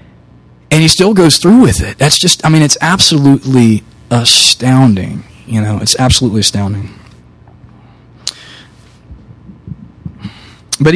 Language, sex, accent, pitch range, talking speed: English, male, American, 115-150 Hz, 110 wpm